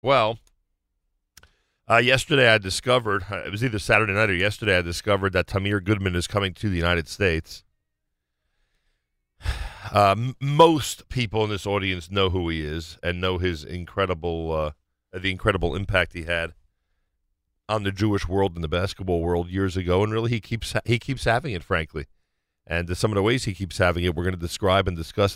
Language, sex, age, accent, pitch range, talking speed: English, male, 50-69, American, 90-130 Hz, 185 wpm